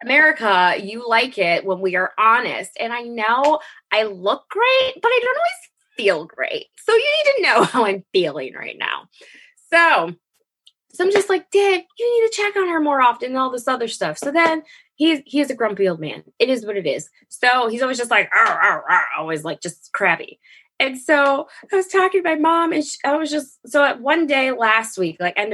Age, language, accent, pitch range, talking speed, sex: 20-39, English, American, 215-345 Hz, 220 wpm, female